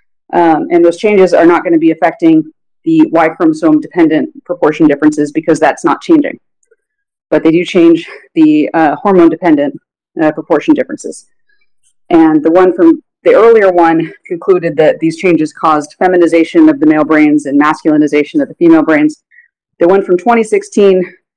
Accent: American